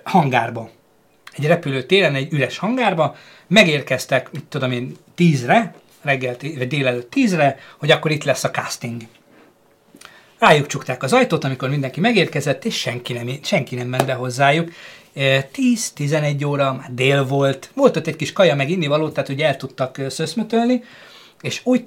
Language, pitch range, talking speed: Hungarian, 130-170 Hz, 150 wpm